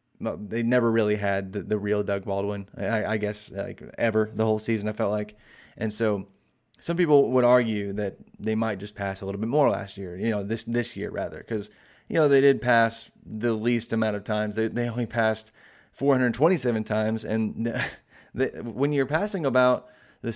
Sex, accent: male, American